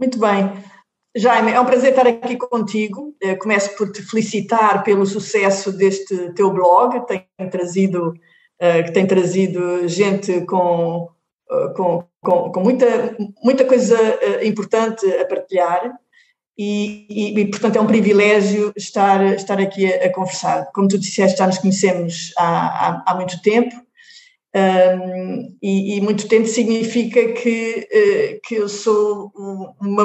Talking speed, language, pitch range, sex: 135 wpm, Portuguese, 190-225 Hz, female